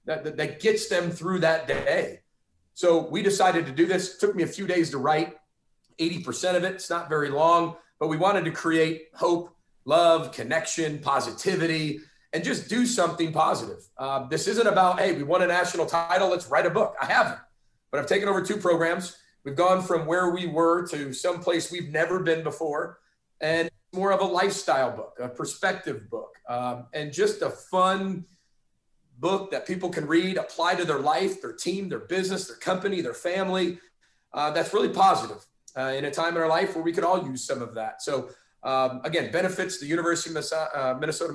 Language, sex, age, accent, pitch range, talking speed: English, male, 40-59, American, 150-180 Hz, 195 wpm